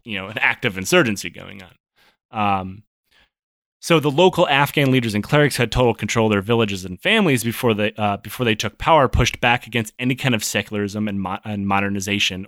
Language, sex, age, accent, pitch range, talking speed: English, male, 30-49, American, 105-145 Hz, 190 wpm